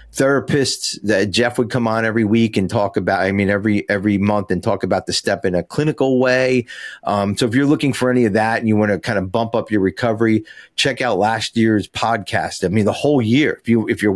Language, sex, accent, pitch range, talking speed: English, male, American, 95-115 Hz, 245 wpm